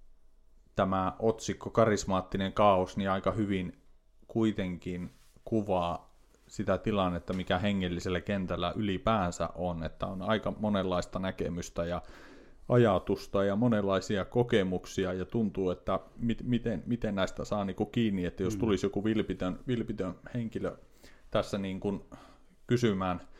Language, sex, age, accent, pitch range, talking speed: Finnish, male, 30-49, native, 95-115 Hz, 110 wpm